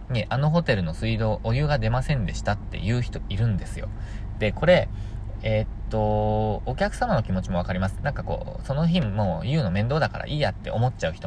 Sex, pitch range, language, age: male, 95-140 Hz, Japanese, 20-39